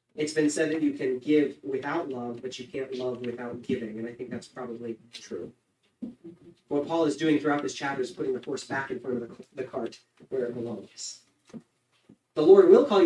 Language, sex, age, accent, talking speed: English, male, 40-59, American, 205 wpm